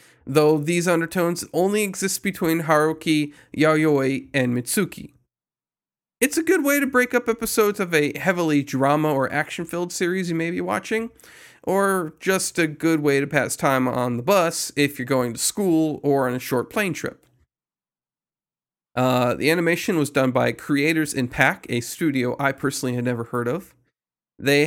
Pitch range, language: 140-195 Hz, English